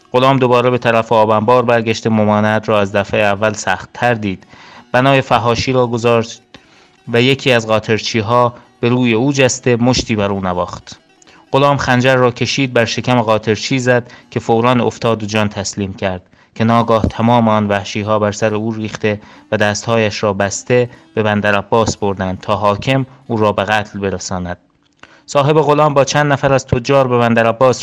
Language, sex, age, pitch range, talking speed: Persian, male, 30-49, 105-120 Hz, 165 wpm